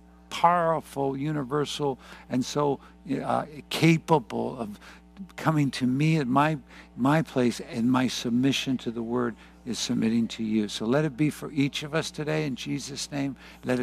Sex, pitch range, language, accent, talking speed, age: male, 120-150 Hz, English, American, 160 wpm, 60-79